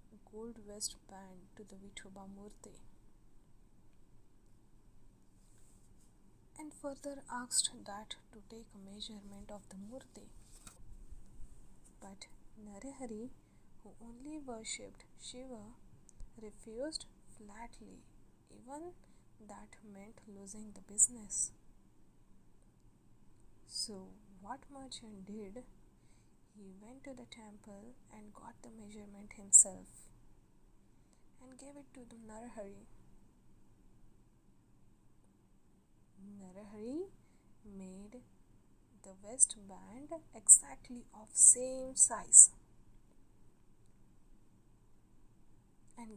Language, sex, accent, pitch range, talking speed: Marathi, female, native, 200-250 Hz, 80 wpm